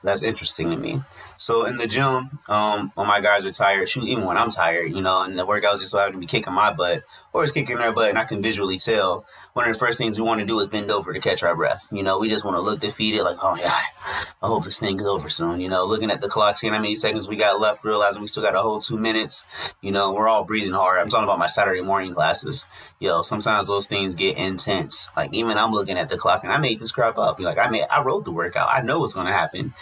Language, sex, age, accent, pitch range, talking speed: English, male, 20-39, American, 100-115 Hz, 290 wpm